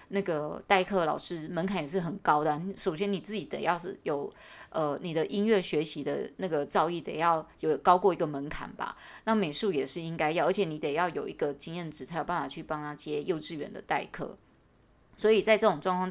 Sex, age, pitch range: female, 20-39, 155-195 Hz